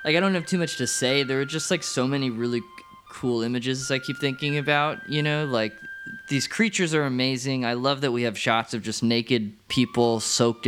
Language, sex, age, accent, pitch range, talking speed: English, male, 20-39, American, 110-140 Hz, 220 wpm